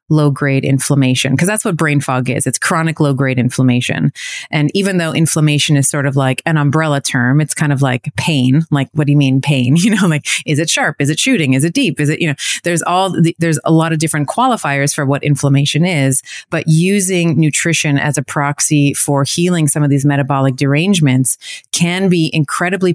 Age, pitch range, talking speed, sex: 30-49, 140-165 Hz, 210 wpm, female